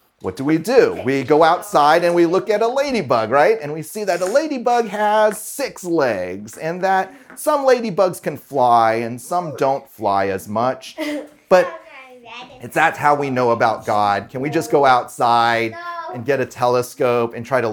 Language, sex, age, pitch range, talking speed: English, male, 30-49, 110-170 Hz, 185 wpm